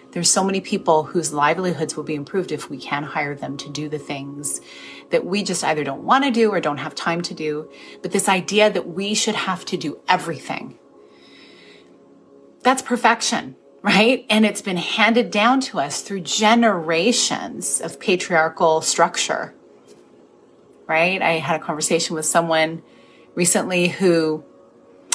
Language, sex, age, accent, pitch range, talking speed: English, female, 30-49, American, 150-195 Hz, 155 wpm